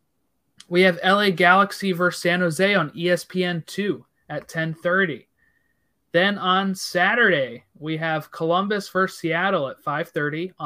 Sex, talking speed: male, 120 wpm